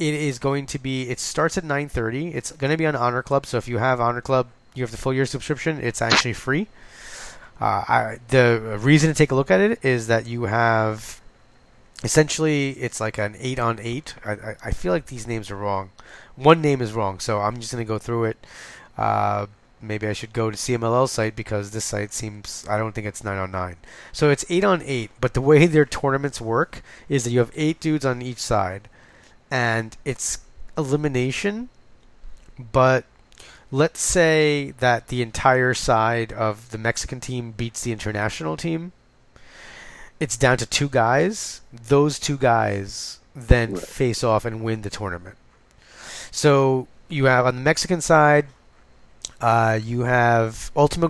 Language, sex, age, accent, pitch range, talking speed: English, male, 20-39, American, 110-140 Hz, 180 wpm